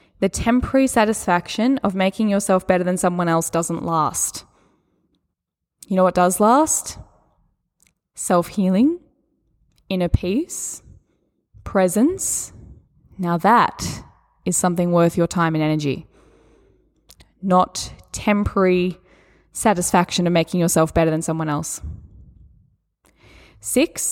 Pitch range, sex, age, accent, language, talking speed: 175-235 Hz, female, 10-29, Australian, English, 100 wpm